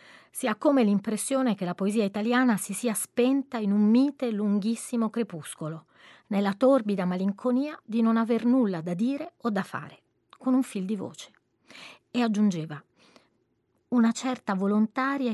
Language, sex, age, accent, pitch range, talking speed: Italian, female, 30-49, native, 195-245 Hz, 150 wpm